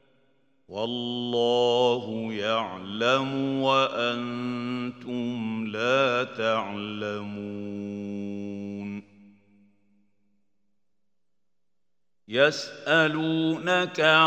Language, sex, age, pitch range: Arabic, male, 50-69, 125-150 Hz